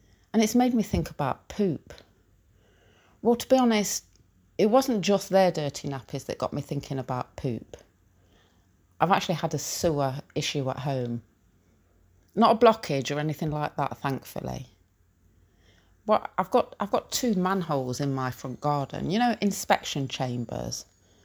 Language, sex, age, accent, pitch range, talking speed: English, female, 30-49, British, 120-180 Hz, 145 wpm